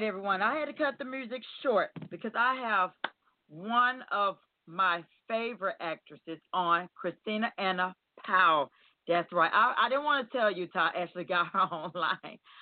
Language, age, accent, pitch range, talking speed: English, 40-59, American, 160-205 Hz, 160 wpm